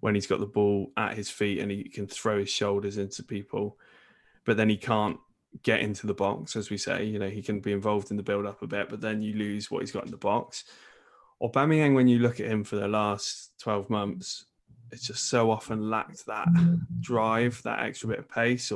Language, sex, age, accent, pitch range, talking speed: English, male, 20-39, British, 105-115 Hz, 230 wpm